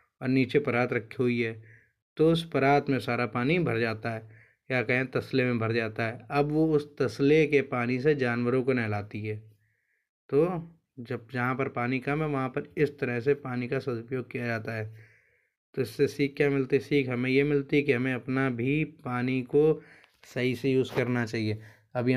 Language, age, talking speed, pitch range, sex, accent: Hindi, 20-39, 200 wpm, 115-140 Hz, male, native